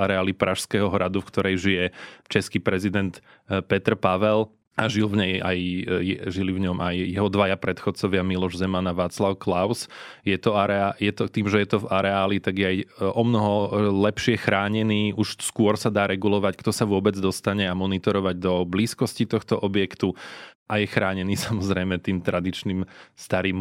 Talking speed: 170 wpm